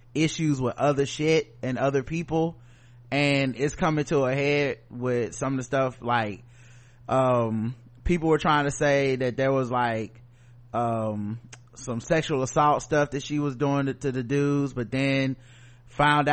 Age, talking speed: 20-39, 160 wpm